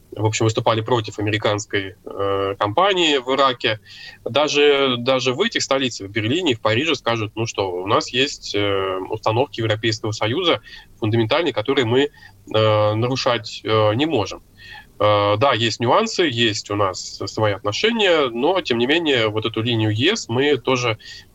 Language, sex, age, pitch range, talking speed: Russian, male, 20-39, 105-135 Hz, 155 wpm